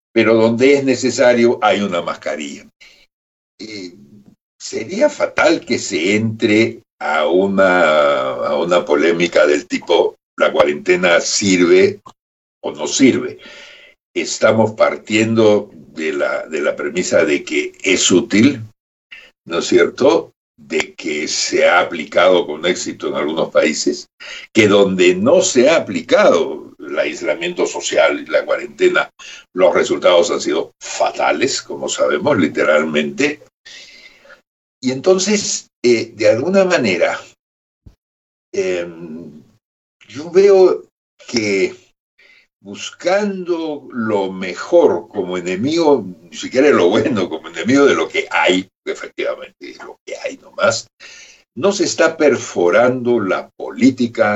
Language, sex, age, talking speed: Spanish, male, 60-79, 115 wpm